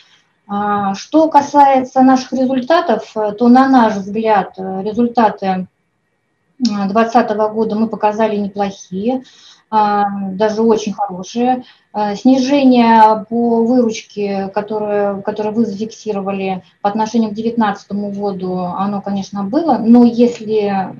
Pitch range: 200-245 Hz